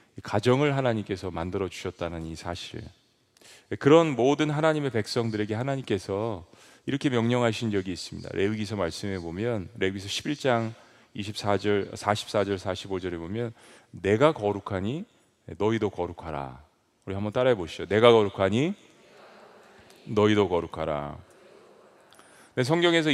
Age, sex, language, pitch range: 40-59, male, Korean, 100-150 Hz